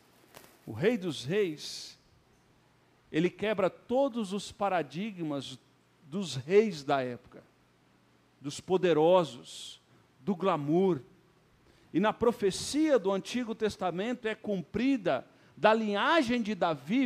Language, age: Portuguese, 50-69